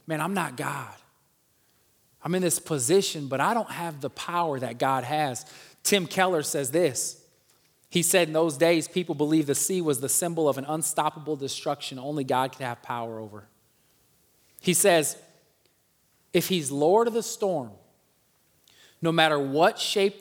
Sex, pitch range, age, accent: male, 135-180 Hz, 20-39, American